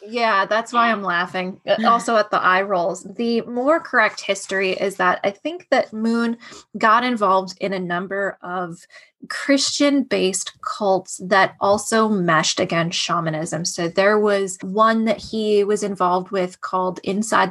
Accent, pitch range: American, 185-230 Hz